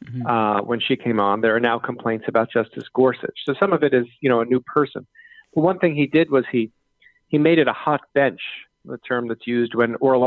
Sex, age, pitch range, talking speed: male, 40-59, 125-150 Hz, 240 wpm